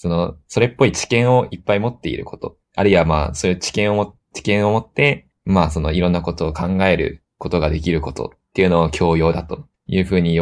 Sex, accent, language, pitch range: male, native, Japanese, 80-105 Hz